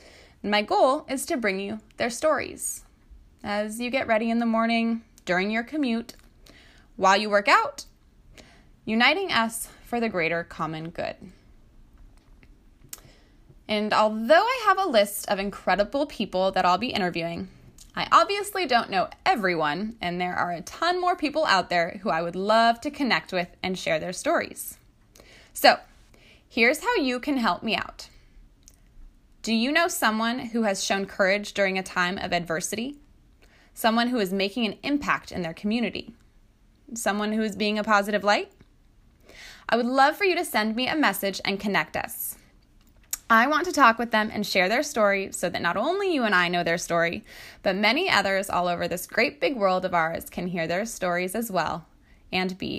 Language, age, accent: English, 20-39, American